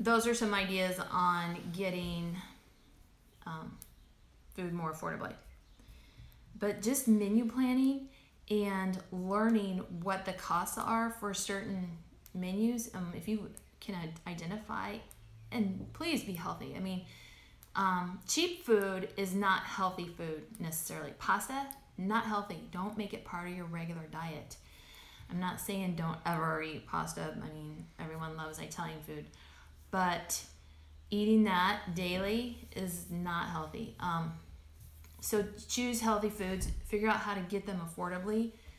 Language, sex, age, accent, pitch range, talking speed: English, female, 30-49, American, 160-200 Hz, 130 wpm